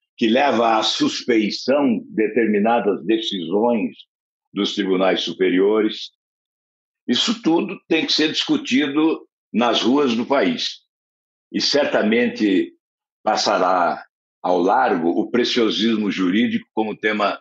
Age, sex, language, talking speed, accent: 60-79, male, Portuguese, 105 wpm, Brazilian